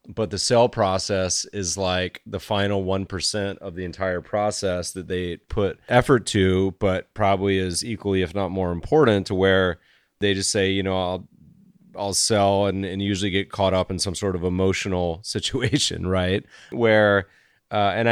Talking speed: 175 wpm